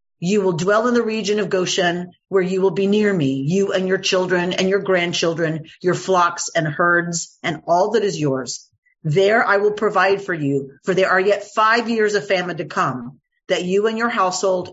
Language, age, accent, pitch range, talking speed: English, 40-59, American, 155-200 Hz, 210 wpm